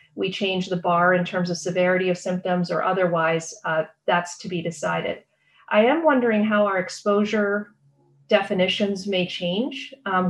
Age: 40-59